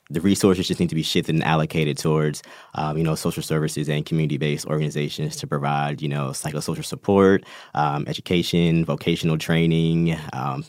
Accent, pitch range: American, 75-85 Hz